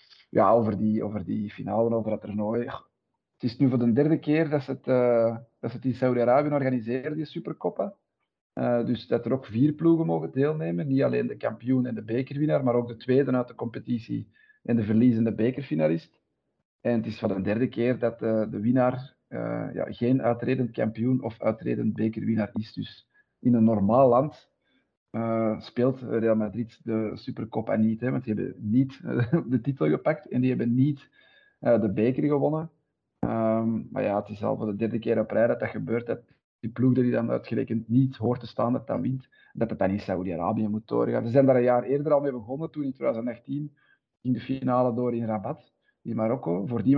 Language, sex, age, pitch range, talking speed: Dutch, male, 40-59, 110-130 Hz, 200 wpm